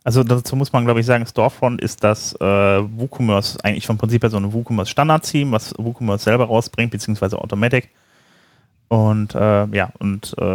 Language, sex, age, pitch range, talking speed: German, male, 30-49, 95-120 Hz, 170 wpm